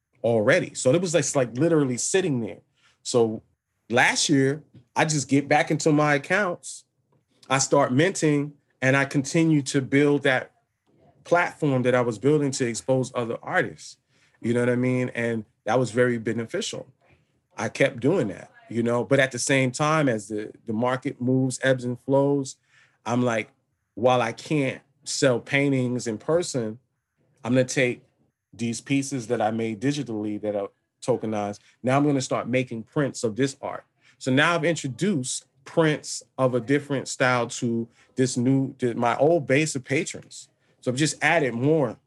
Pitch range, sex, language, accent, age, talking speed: 120-140 Hz, male, English, American, 30-49, 175 wpm